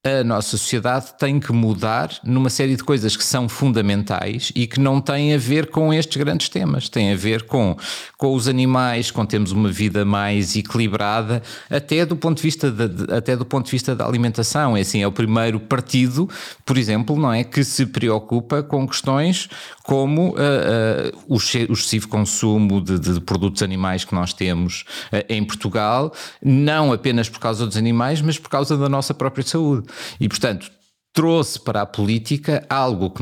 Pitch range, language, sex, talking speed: 105-135 Hz, Portuguese, male, 180 wpm